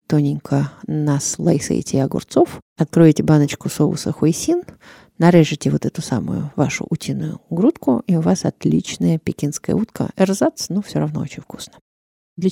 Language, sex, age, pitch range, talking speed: Russian, female, 30-49, 150-185 Hz, 135 wpm